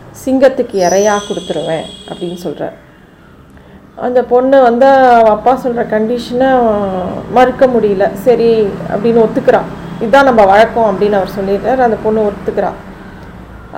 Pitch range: 195-235 Hz